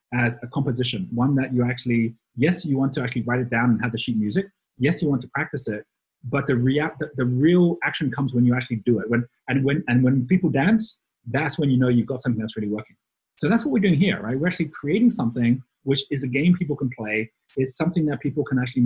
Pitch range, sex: 115-140 Hz, male